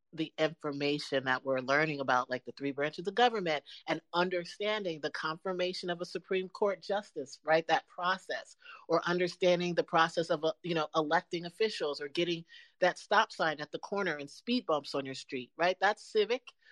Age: 40-59